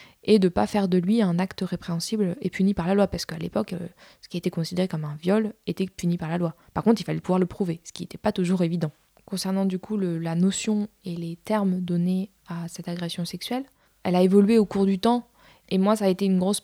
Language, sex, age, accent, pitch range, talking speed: French, female, 20-39, French, 175-205 Hz, 255 wpm